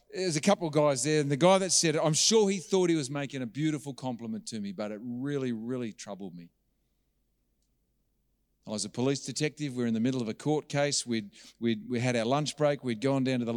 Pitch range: 105-155 Hz